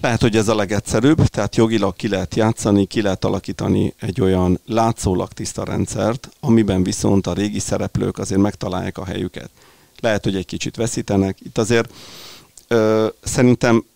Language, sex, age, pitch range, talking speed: Hungarian, male, 40-59, 100-115 Hz, 150 wpm